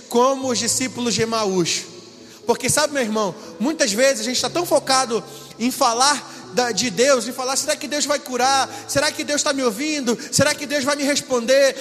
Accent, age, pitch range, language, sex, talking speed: Brazilian, 20-39, 250-295 Hz, Portuguese, male, 200 wpm